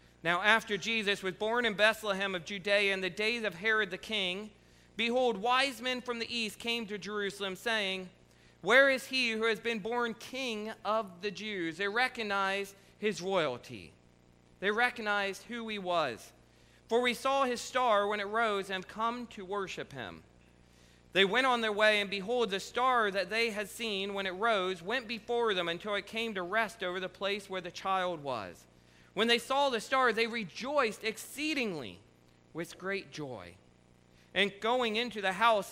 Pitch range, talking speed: 175-225 Hz, 180 wpm